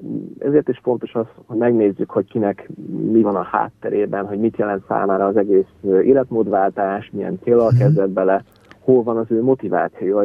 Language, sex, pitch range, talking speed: Hungarian, male, 100-115 Hz, 165 wpm